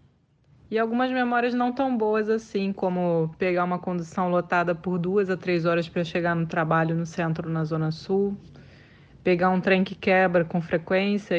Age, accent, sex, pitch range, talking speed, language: 20-39, Brazilian, female, 170-195 Hz, 175 wpm, Portuguese